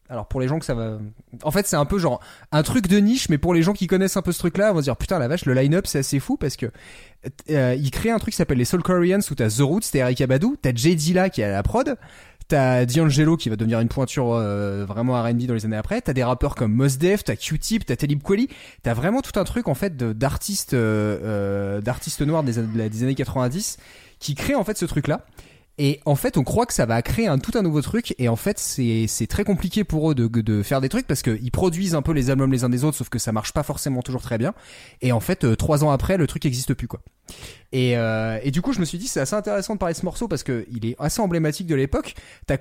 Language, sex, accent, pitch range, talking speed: French, male, French, 120-175 Hz, 285 wpm